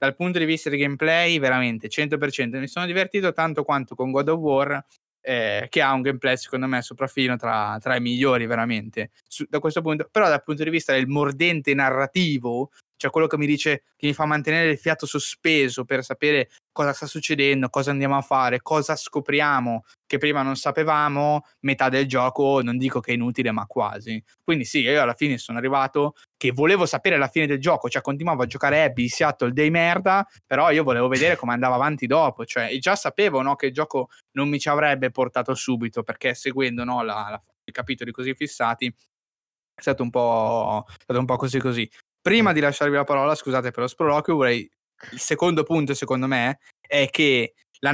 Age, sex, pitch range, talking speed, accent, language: 20-39, male, 125-150 Hz, 185 wpm, native, Italian